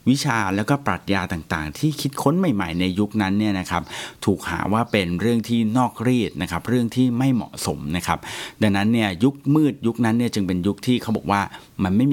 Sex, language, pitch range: male, Thai, 90-125 Hz